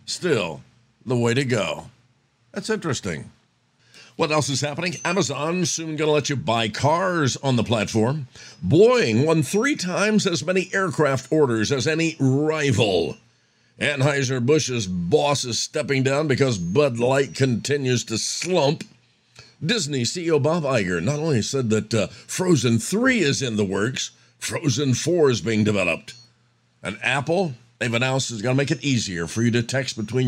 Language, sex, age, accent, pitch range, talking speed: English, male, 50-69, American, 115-155 Hz, 155 wpm